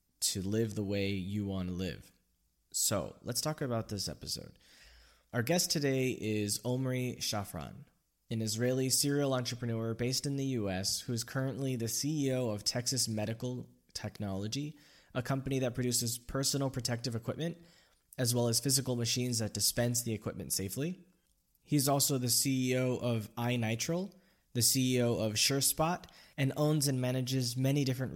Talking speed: 150 wpm